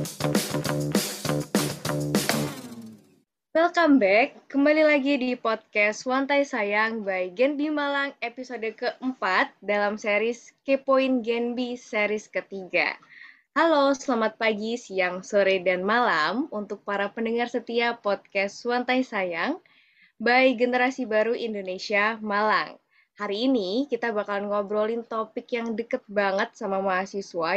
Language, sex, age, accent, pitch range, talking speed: Indonesian, female, 20-39, native, 195-245 Hz, 110 wpm